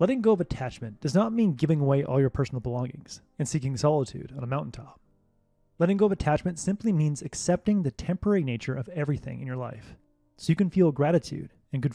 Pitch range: 120-175 Hz